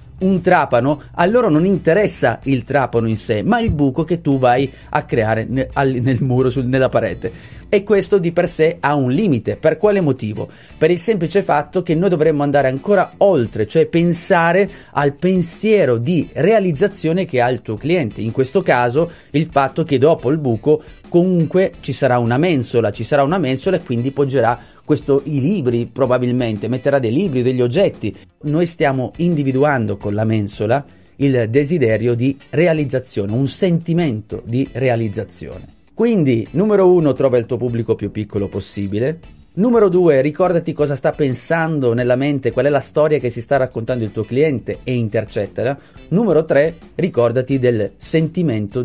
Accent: native